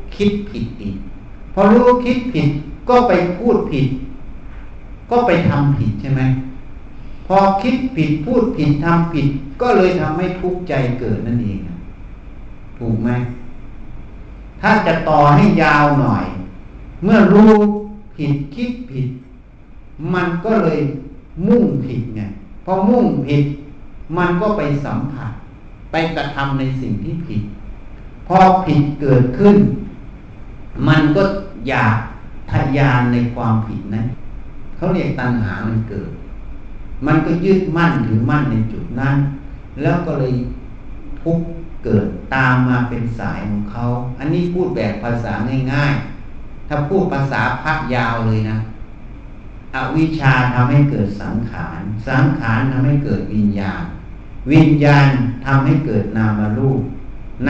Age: 60-79